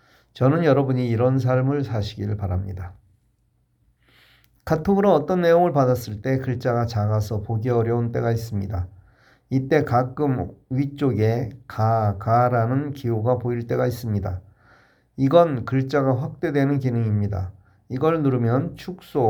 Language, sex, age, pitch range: Korean, male, 40-59, 105-135 Hz